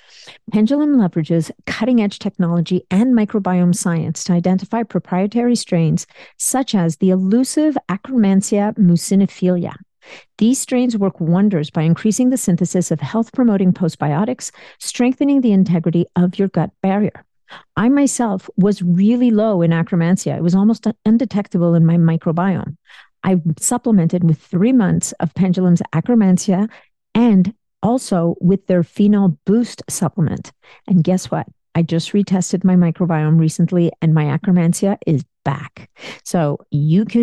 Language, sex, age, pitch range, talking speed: English, female, 50-69, 170-215 Hz, 130 wpm